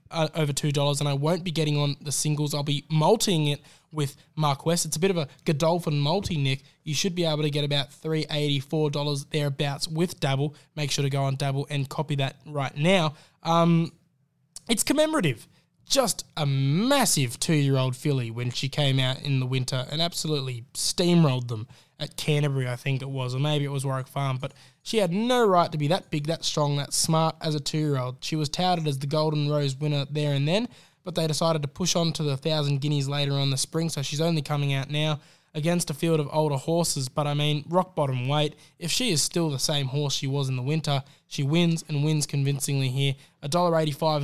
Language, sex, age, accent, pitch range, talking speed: English, male, 20-39, Australian, 140-160 Hz, 215 wpm